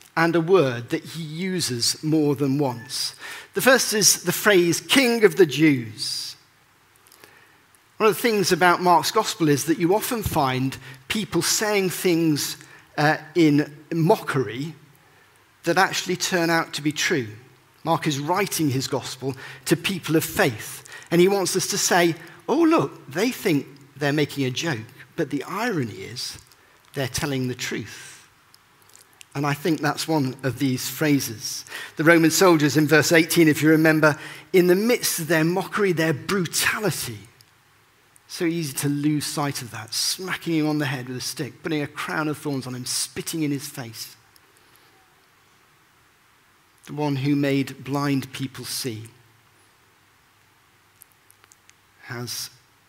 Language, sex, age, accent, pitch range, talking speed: English, male, 50-69, British, 130-170 Hz, 150 wpm